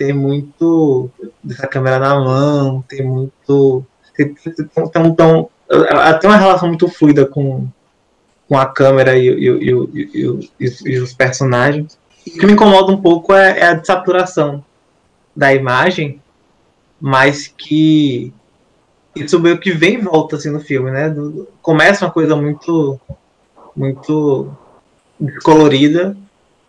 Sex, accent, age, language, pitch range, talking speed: male, Brazilian, 20-39, Portuguese, 135-160 Hz, 145 wpm